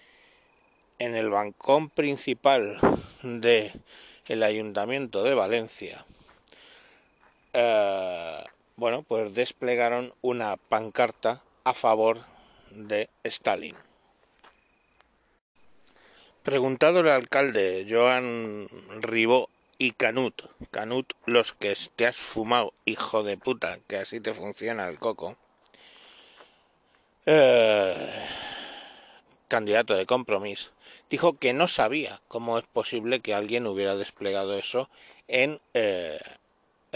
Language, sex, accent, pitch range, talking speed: Spanish, male, Spanish, 105-135 Hz, 95 wpm